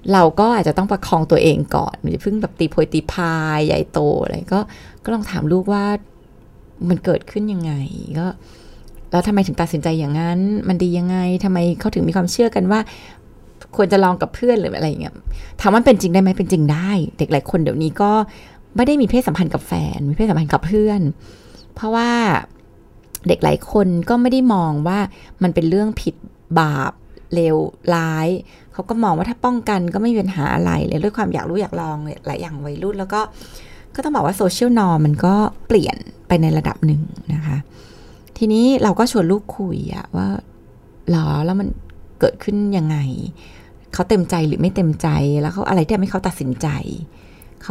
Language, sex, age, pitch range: Thai, female, 20-39, 160-205 Hz